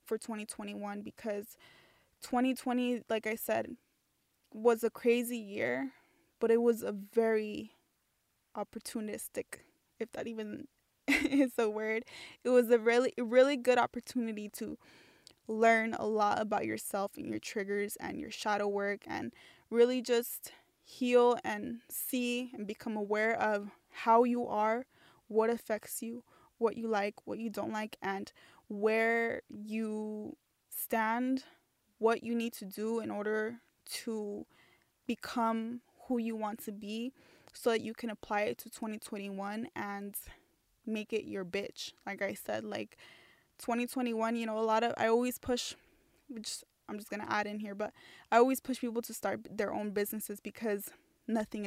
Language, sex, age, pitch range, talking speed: English, female, 10-29, 210-240 Hz, 150 wpm